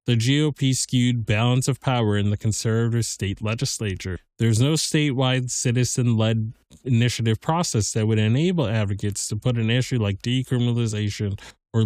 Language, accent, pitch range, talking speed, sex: English, American, 110-130 Hz, 140 wpm, male